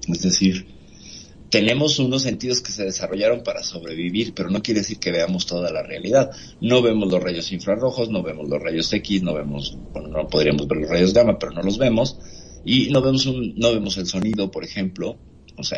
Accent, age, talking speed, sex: Mexican, 50-69, 205 wpm, male